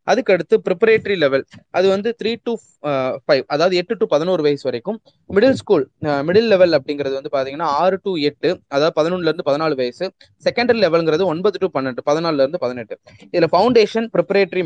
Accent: native